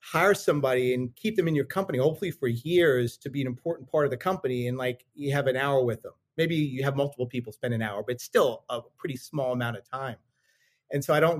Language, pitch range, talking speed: English, 125-155 Hz, 255 wpm